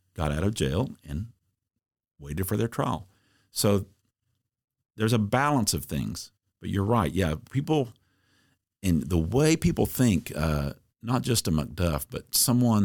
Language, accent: English, American